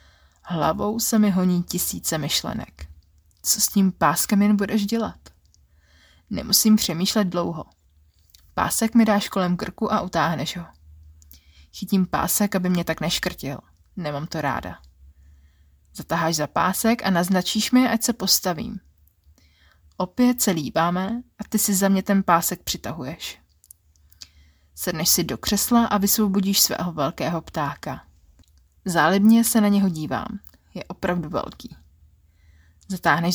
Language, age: Czech, 20-39